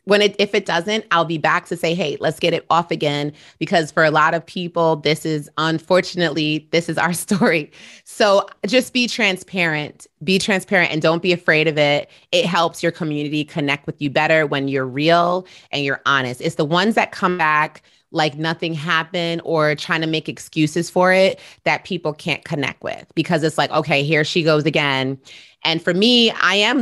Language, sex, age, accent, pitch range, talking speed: English, female, 30-49, American, 150-185 Hz, 200 wpm